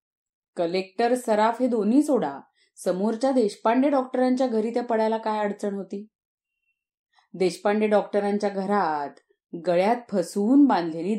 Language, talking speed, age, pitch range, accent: Marathi, 105 wpm, 30-49, 175-235 Hz, native